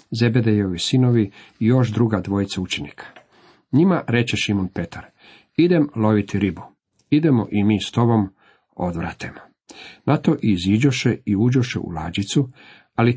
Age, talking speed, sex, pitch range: 50-69, 130 wpm, male, 100-130 Hz